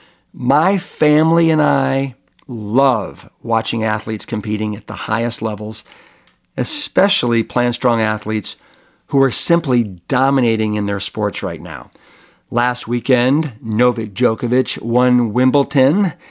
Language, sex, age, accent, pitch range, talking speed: English, male, 50-69, American, 110-135 Hz, 115 wpm